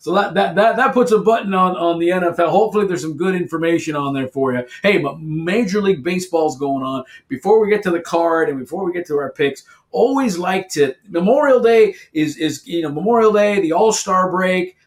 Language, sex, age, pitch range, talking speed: English, male, 50-69, 160-210 Hz, 220 wpm